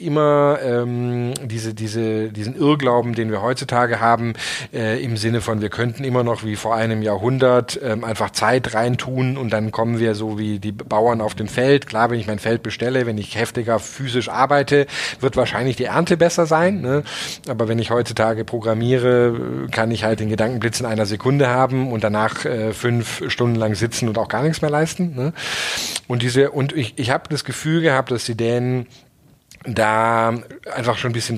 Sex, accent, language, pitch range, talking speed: male, German, German, 115-135 Hz, 190 wpm